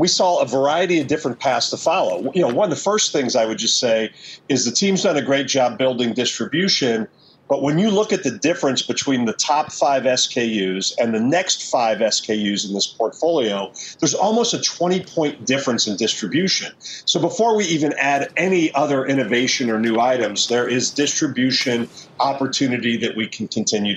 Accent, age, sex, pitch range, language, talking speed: American, 40-59, male, 120-160 Hz, English, 190 wpm